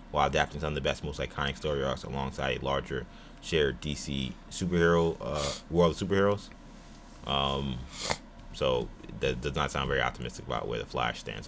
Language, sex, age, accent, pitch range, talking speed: English, male, 20-39, American, 70-105 Hz, 160 wpm